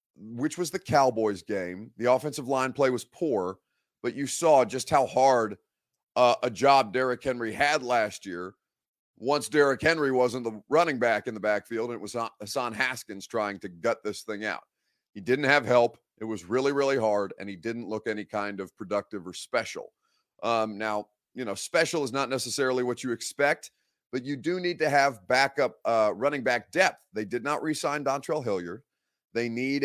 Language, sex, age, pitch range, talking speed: English, male, 30-49, 105-130 Hz, 190 wpm